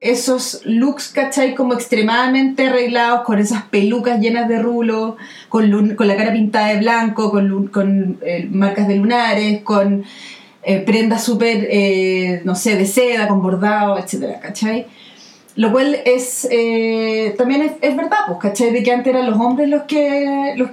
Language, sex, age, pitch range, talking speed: Spanish, female, 30-49, 215-260 Hz, 170 wpm